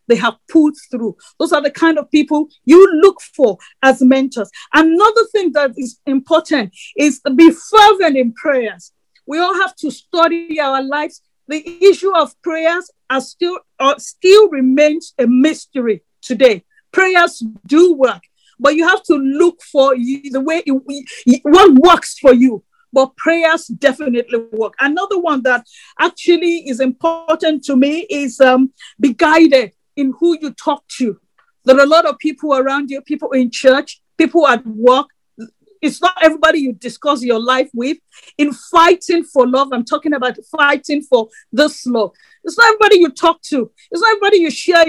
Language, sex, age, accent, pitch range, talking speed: English, female, 40-59, Nigerian, 265-340 Hz, 170 wpm